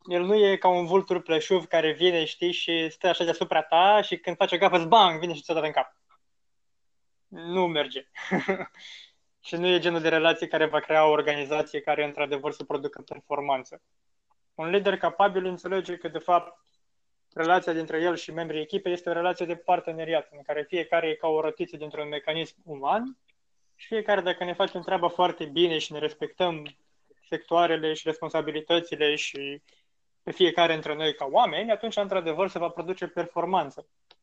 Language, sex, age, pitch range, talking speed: Romanian, male, 20-39, 155-175 Hz, 175 wpm